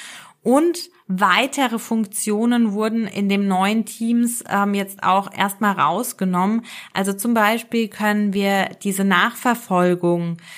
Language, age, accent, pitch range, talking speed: German, 20-39, German, 185-235 Hz, 110 wpm